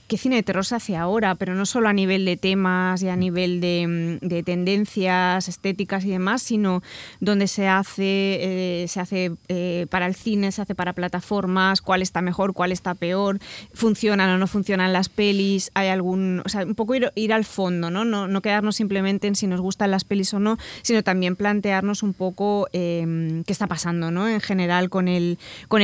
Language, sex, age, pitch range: Spanish, female, 20-39, 180-205 Hz